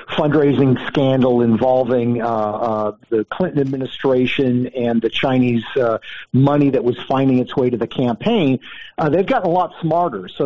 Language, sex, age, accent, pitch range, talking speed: English, male, 50-69, American, 130-160 Hz, 160 wpm